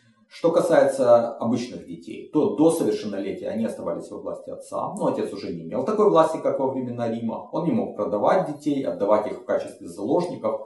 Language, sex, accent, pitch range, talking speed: Russian, male, native, 105-160 Hz, 185 wpm